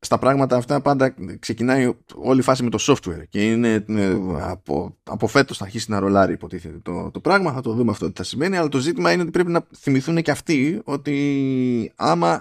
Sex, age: male, 20-39